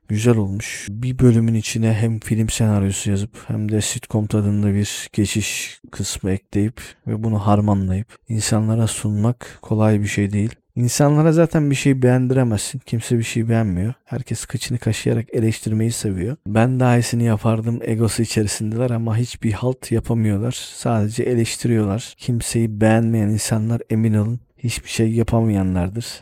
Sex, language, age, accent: male, Turkish, 40-59, native